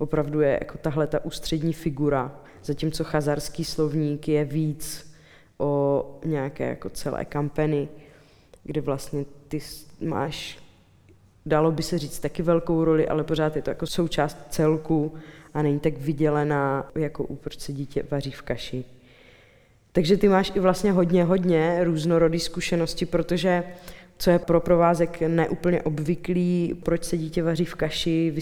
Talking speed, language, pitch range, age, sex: 145 wpm, Czech, 150-170 Hz, 20-39, female